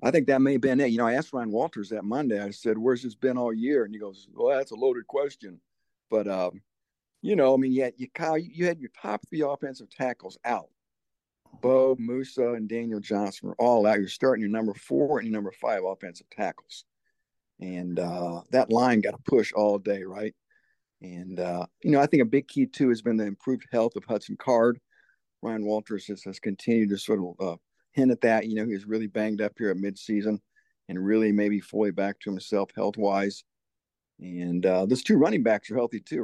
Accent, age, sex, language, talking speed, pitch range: American, 50-69, male, English, 215 wpm, 100-125 Hz